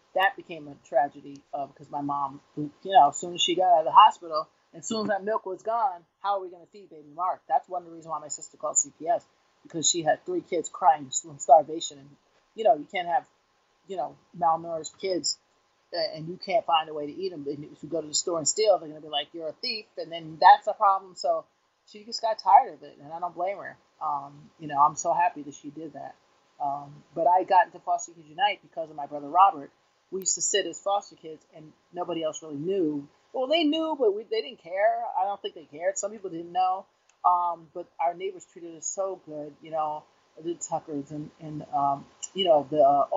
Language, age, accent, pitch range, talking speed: English, 30-49, American, 155-205 Hz, 245 wpm